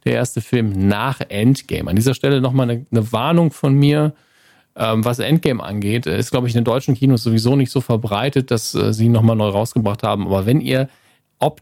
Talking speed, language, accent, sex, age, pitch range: 205 wpm, German, German, male, 40-59, 100-125 Hz